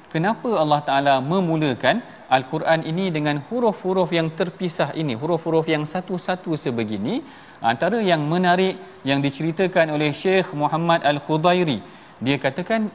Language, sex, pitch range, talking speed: Malayalam, male, 140-180 Hz, 120 wpm